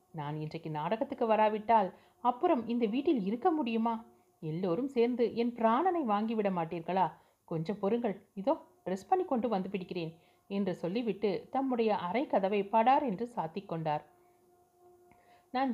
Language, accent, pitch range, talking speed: Tamil, native, 180-245 Hz, 125 wpm